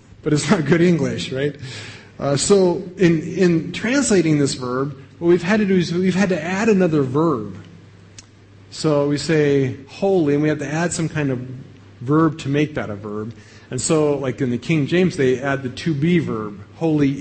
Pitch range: 120-180 Hz